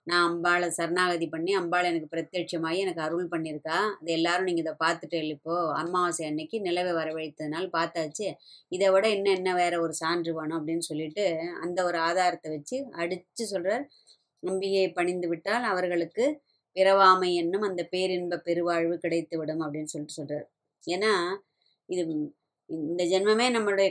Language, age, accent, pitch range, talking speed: Tamil, 20-39, native, 170-205 Hz, 135 wpm